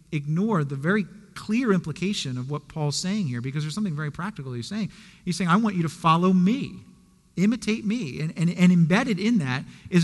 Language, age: English, 40-59